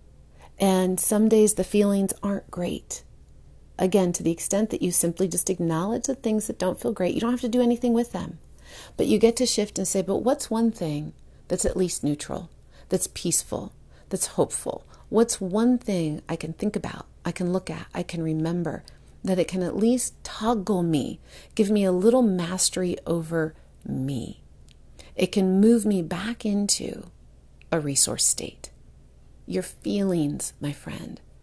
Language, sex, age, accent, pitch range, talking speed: English, female, 40-59, American, 165-215 Hz, 170 wpm